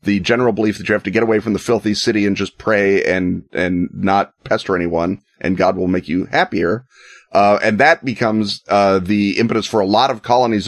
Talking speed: 220 wpm